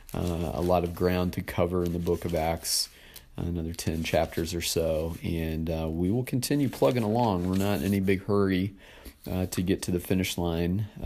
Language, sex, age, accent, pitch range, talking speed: English, male, 40-59, American, 90-105 Hz, 205 wpm